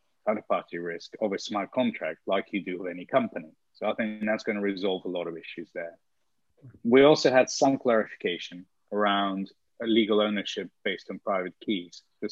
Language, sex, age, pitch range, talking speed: English, male, 30-49, 95-115 Hz, 180 wpm